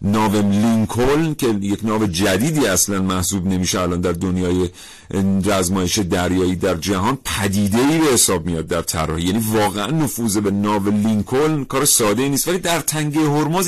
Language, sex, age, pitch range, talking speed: Persian, male, 40-59, 95-130 Hz, 160 wpm